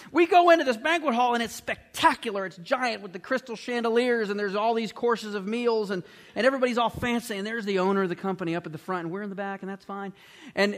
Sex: male